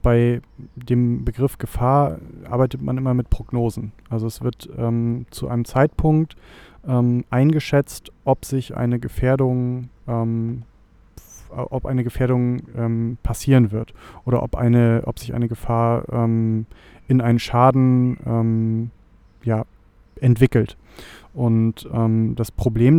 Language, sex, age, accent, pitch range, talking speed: German, male, 30-49, German, 115-130 Hz, 125 wpm